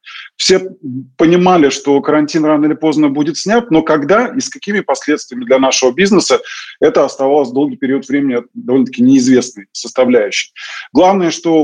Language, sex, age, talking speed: Russian, male, 20-39, 145 wpm